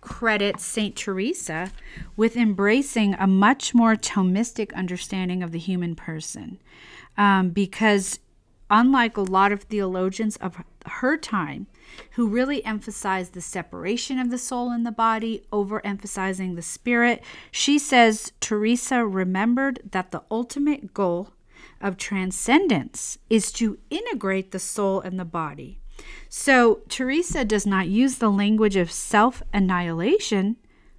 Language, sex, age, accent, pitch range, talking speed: English, female, 40-59, American, 185-235 Hz, 125 wpm